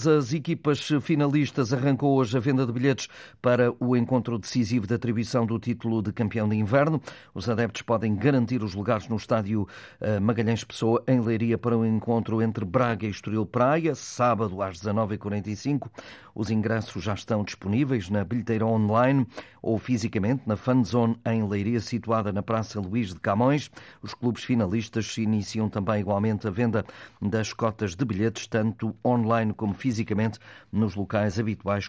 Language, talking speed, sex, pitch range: Portuguese, 160 wpm, male, 110-130 Hz